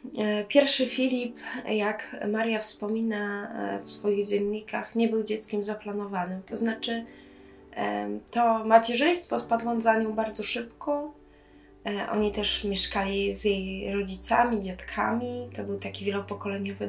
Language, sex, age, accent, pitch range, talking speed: Polish, female, 20-39, native, 185-230 Hz, 115 wpm